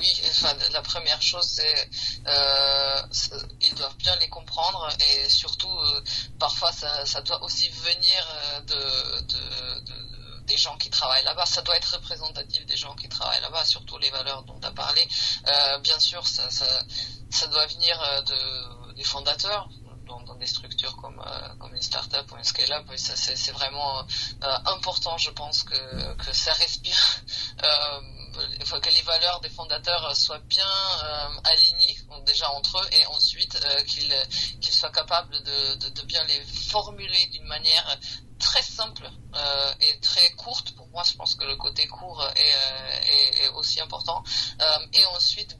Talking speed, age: 175 wpm, 20-39